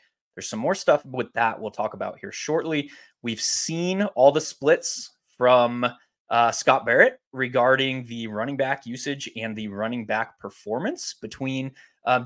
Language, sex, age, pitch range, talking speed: English, male, 20-39, 115-165 Hz, 155 wpm